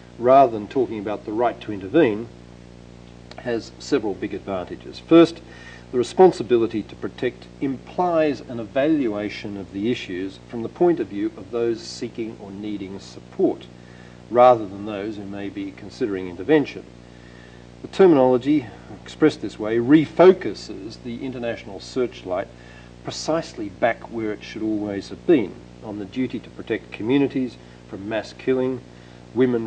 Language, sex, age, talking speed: English, male, 50-69, 140 wpm